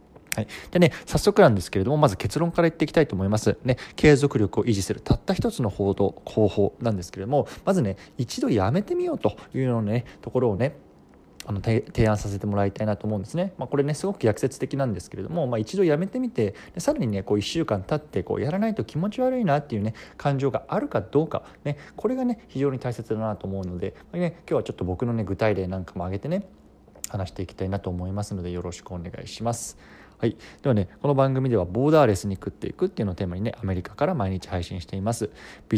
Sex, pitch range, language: male, 95-140 Hz, Japanese